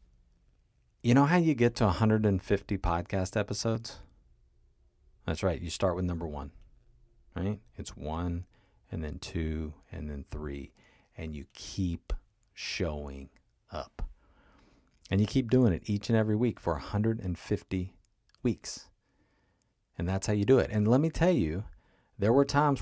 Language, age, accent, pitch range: English, 40-59, American, 80-115 Hz